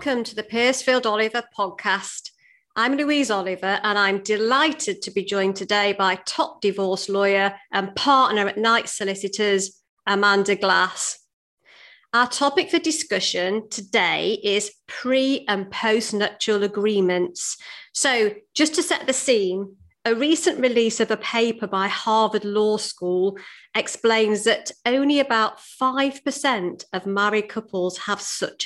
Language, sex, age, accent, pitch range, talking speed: English, female, 40-59, British, 200-270 Hz, 135 wpm